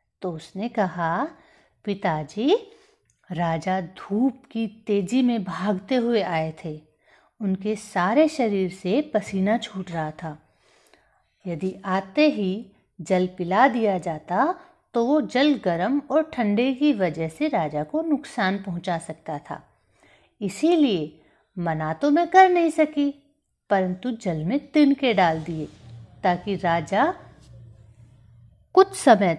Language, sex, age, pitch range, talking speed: Hindi, female, 50-69, 170-250 Hz, 125 wpm